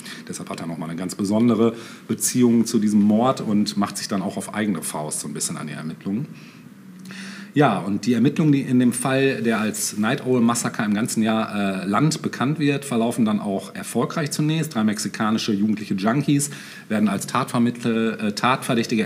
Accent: German